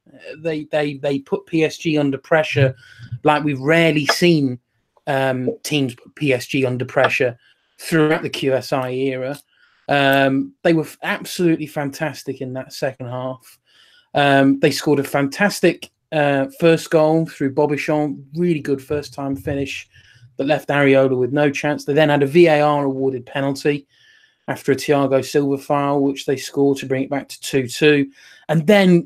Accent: British